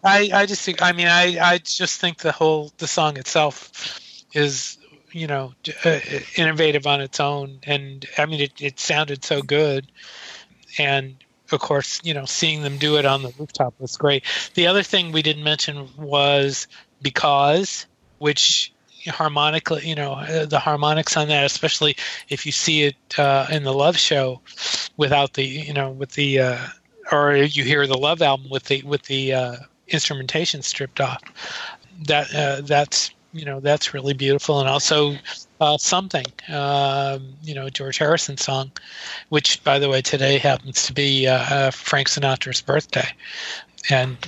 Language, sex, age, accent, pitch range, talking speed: English, male, 40-59, American, 135-155 Hz, 165 wpm